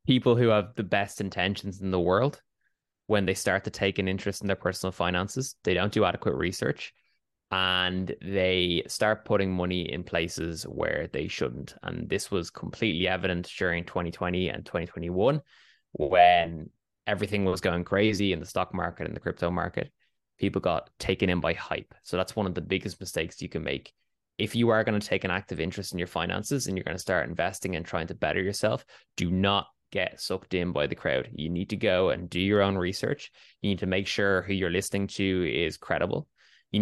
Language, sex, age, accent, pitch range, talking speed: English, male, 10-29, Irish, 90-100 Hz, 205 wpm